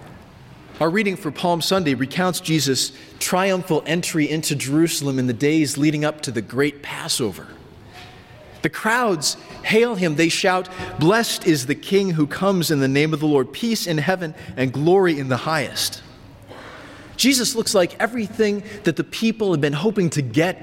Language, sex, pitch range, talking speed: English, male, 125-185 Hz, 170 wpm